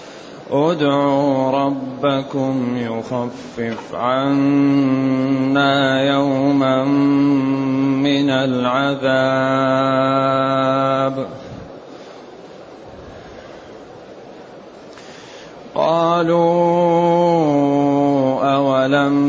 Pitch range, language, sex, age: 135-145 Hz, Arabic, male, 30-49